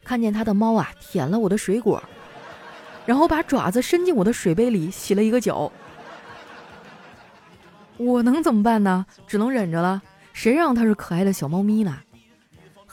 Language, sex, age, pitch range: Chinese, female, 20-39, 175-245 Hz